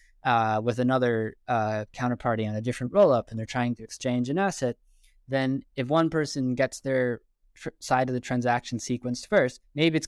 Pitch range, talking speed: 115-145 Hz, 185 wpm